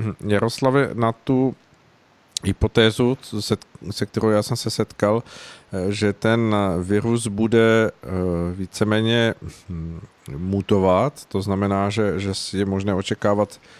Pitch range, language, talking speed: 100-110 Hz, Czech, 105 wpm